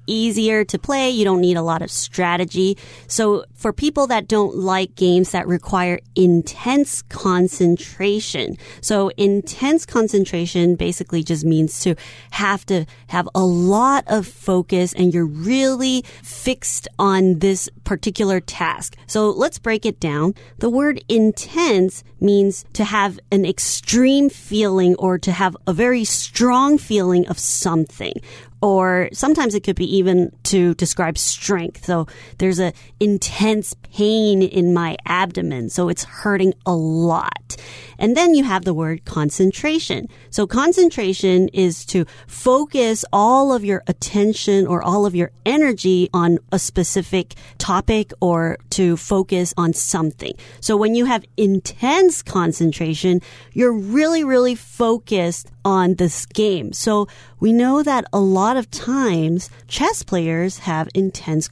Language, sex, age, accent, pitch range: Chinese, female, 30-49, American, 175-215 Hz